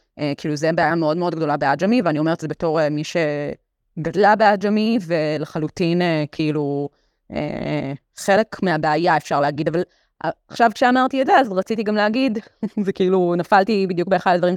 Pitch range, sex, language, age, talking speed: 160-215 Hz, female, Hebrew, 20-39, 165 wpm